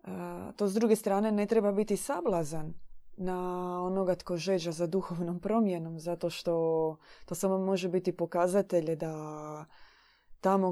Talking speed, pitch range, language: 130 wpm, 170-195 Hz, Croatian